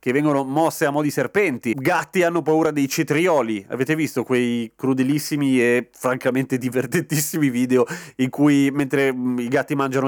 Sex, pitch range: male, 130-170 Hz